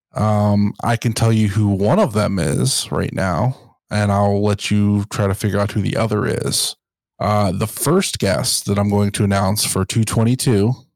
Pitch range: 100-120 Hz